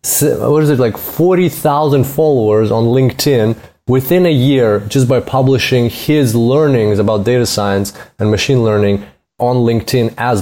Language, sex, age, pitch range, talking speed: English, male, 20-39, 105-130 Hz, 145 wpm